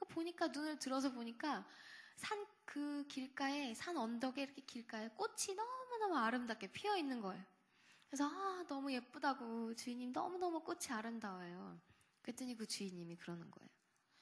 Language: Korean